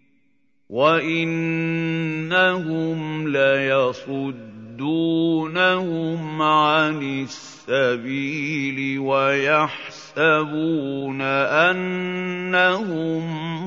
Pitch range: 140-185 Hz